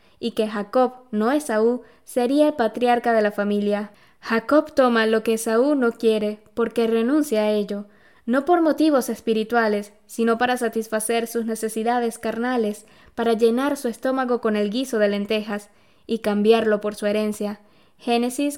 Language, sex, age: Spanish, female, 10-29